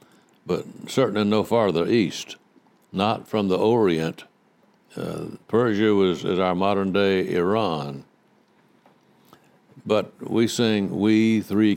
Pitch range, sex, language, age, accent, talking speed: 90-105 Hz, male, English, 60-79, American, 105 wpm